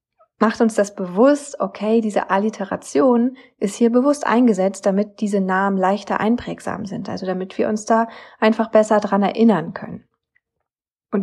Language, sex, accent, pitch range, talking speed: German, female, German, 190-240 Hz, 150 wpm